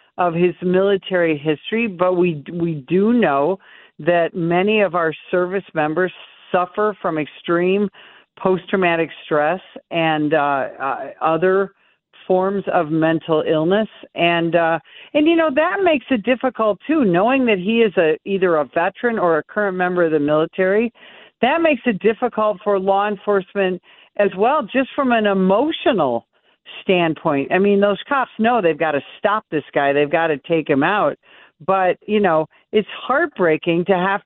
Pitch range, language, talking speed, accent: 160-210 Hz, English, 160 wpm, American